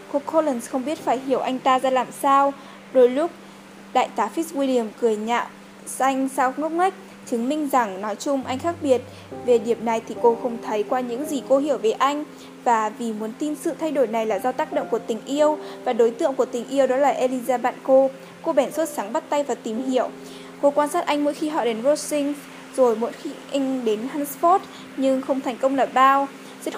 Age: 10-29